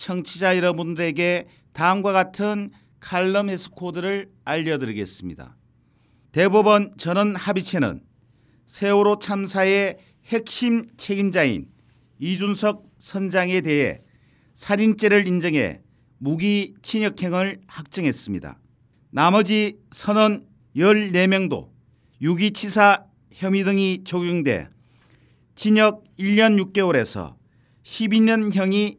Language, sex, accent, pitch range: Korean, male, native, 165-210 Hz